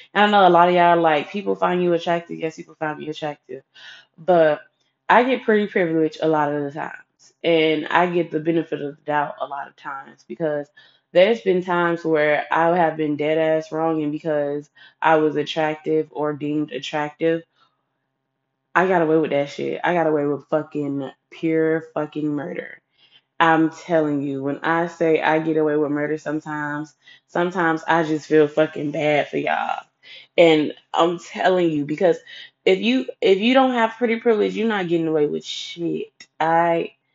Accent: American